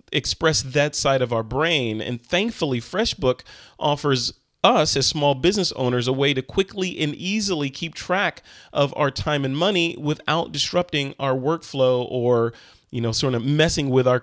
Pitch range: 130-170 Hz